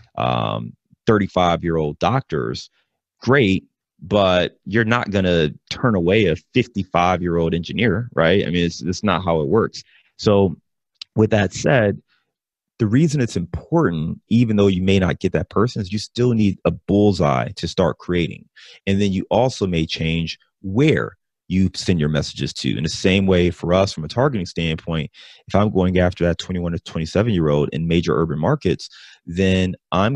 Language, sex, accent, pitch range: English, male, American, 80-100 Hz